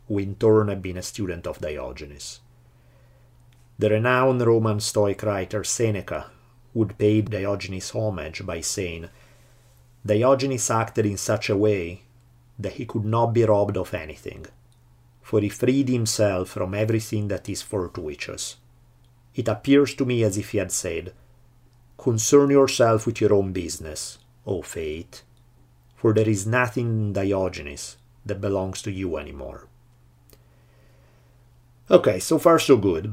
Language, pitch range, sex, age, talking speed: English, 90-120 Hz, male, 50-69, 140 wpm